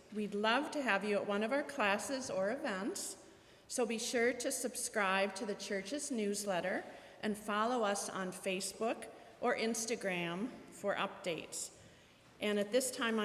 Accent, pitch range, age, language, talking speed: American, 195-240 Hz, 40-59, English, 155 wpm